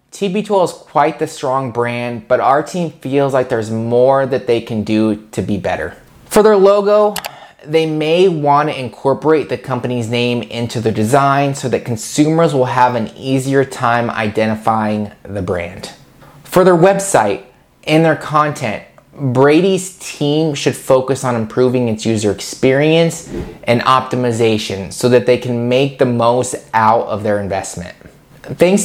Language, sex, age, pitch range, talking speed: English, male, 20-39, 120-155 Hz, 155 wpm